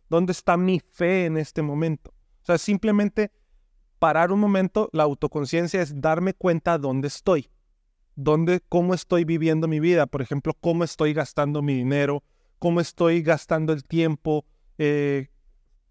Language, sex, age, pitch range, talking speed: English, male, 30-49, 150-185 Hz, 145 wpm